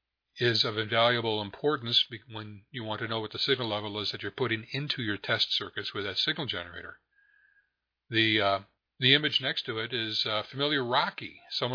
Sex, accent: male, American